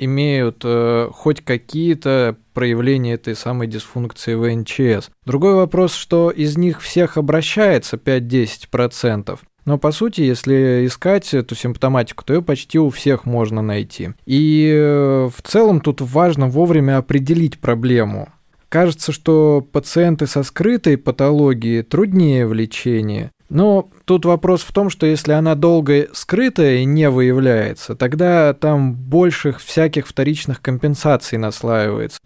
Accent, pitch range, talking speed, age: native, 125-165 Hz, 130 wpm, 20-39